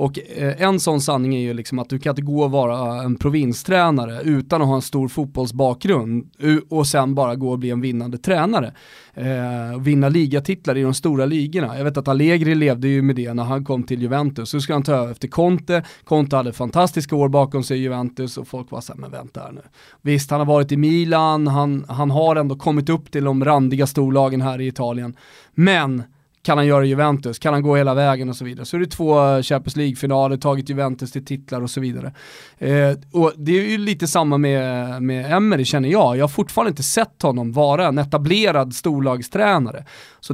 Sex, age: male, 20-39